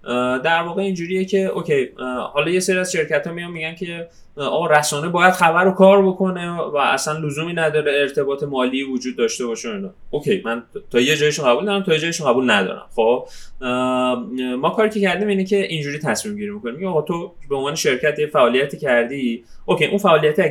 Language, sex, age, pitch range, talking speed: Persian, male, 20-39, 140-205 Hz, 185 wpm